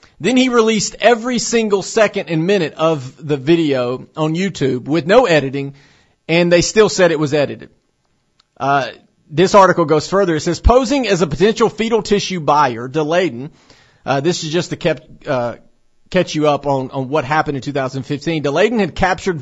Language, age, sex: English, 40-59, male